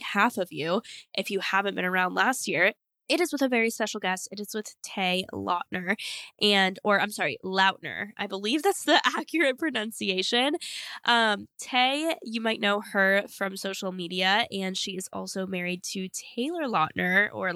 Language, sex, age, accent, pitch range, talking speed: English, female, 10-29, American, 195-255 Hz, 175 wpm